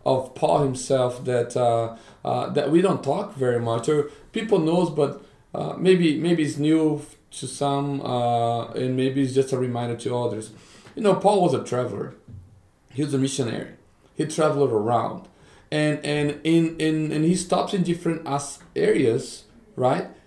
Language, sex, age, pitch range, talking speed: English, male, 40-59, 125-160 Hz, 165 wpm